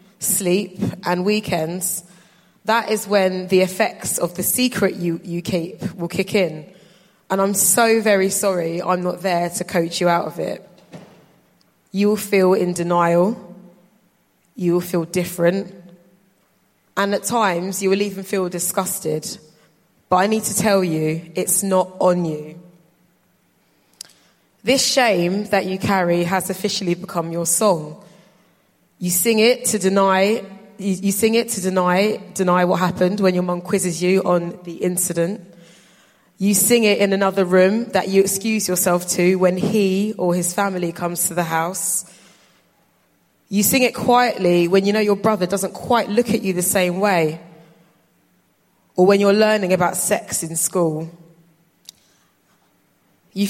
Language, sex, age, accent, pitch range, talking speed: English, female, 20-39, British, 175-200 Hz, 155 wpm